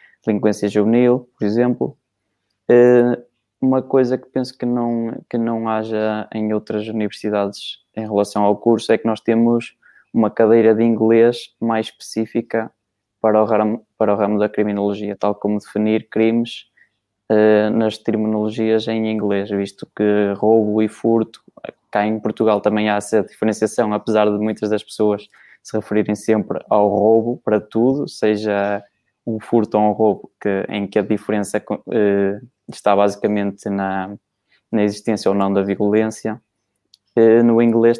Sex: male